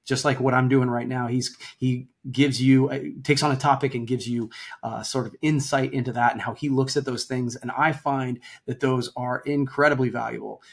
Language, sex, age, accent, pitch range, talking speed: English, male, 30-49, American, 125-150 Hz, 220 wpm